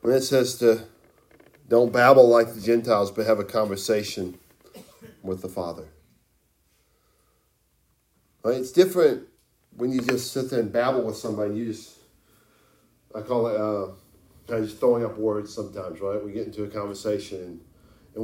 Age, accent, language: 40-59, American, English